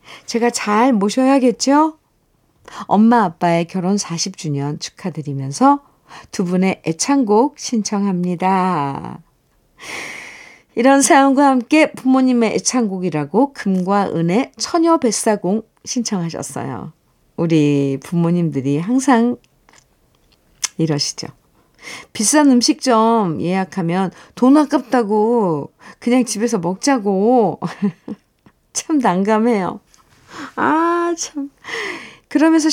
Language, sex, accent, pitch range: Korean, female, native, 180-260 Hz